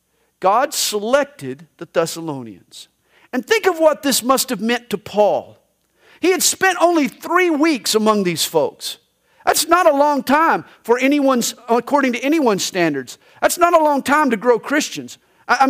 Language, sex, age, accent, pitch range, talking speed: English, male, 50-69, American, 160-270 Hz, 165 wpm